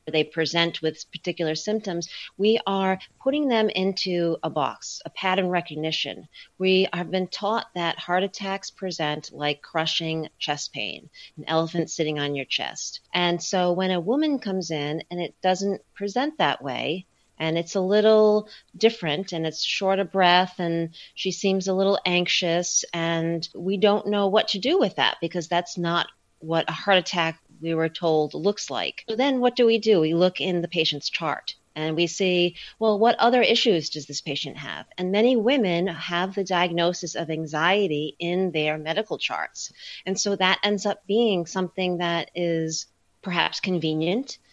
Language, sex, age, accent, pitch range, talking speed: English, female, 40-59, American, 160-200 Hz, 175 wpm